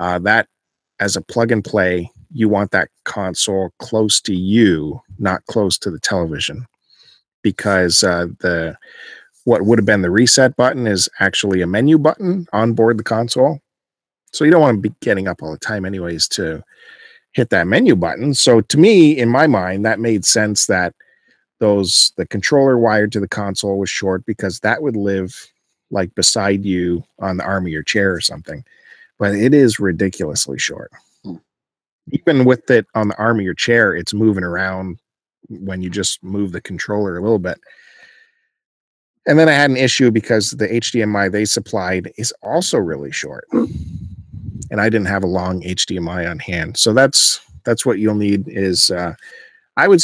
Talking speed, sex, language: 175 wpm, male, English